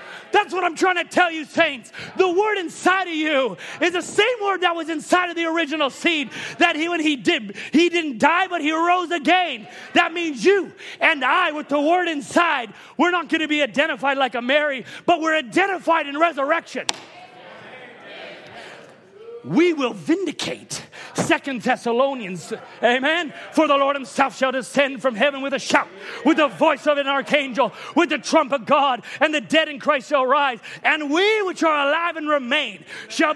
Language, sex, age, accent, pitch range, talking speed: English, male, 30-49, American, 280-345 Hz, 185 wpm